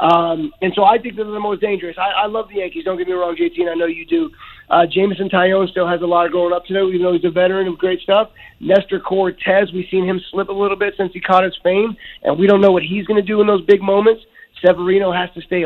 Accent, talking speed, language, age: American, 290 wpm, English, 30-49